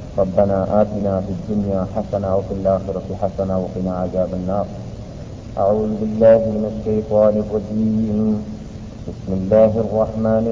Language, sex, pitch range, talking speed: Malayalam, male, 100-115 Hz, 110 wpm